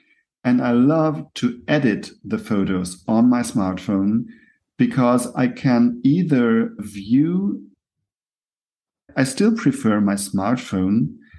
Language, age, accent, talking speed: English, 50-69, German, 105 wpm